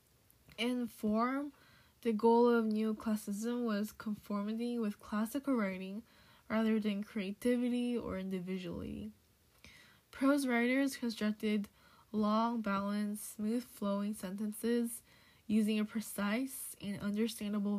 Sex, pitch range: female, 205-235 Hz